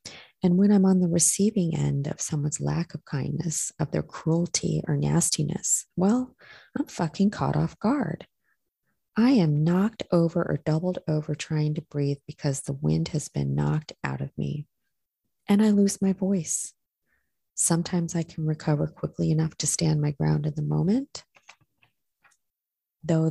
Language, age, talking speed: English, 30-49, 155 wpm